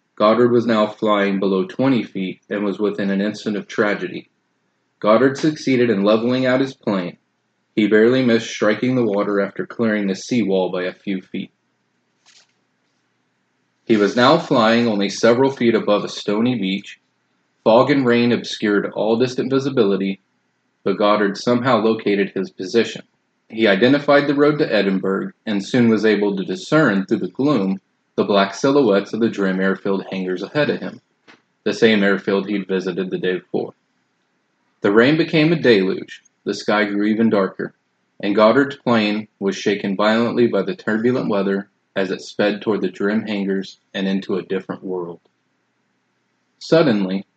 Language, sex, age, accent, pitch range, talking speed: English, male, 30-49, American, 95-120 Hz, 160 wpm